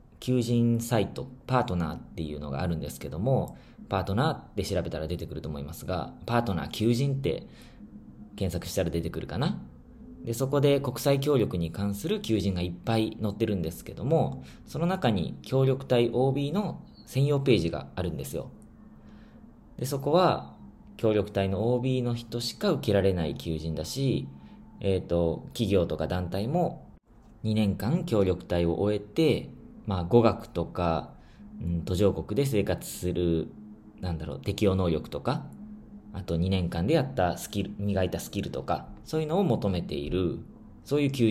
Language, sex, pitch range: Japanese, male, 90-130 Hz